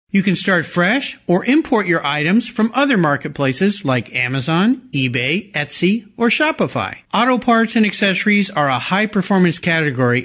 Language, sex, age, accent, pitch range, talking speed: English, male, 50-69, American, 140-225 Hz, 145 wpm